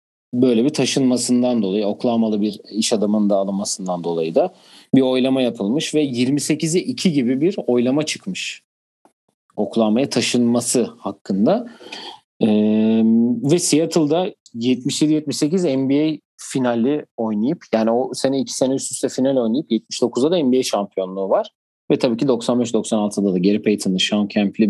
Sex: male